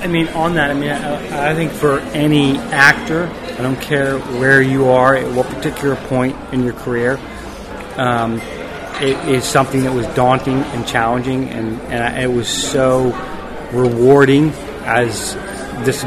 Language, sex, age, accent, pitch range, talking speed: English, male, 40-59, American, 120-135 Hz, 155 wpm